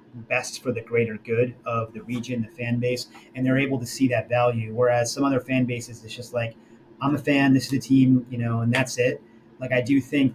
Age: 30-49